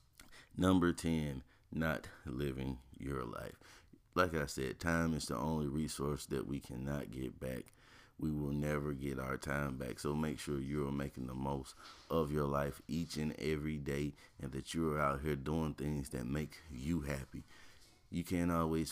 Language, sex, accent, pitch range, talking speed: English, male, American, 65-75 Hz, 170 wpm